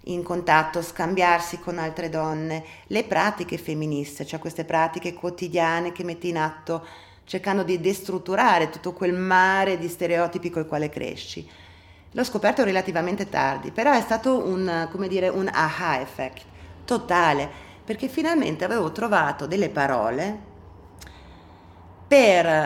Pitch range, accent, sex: 140-185 Hz, Italian, female